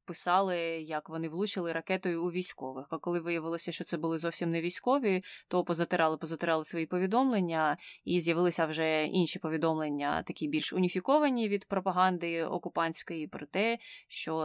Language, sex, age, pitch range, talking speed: Ukrainian, female, 20-39, 160-200 Hz, 140 wpm